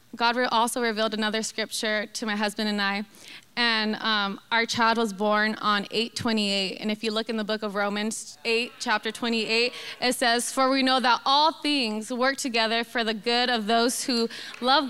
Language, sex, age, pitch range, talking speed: English, female, 20-39, 225-265 Hz, 190 wpm